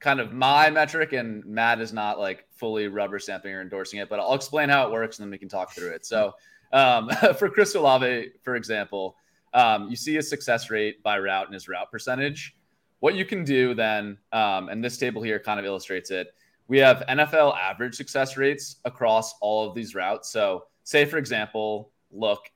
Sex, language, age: male, English, 20-39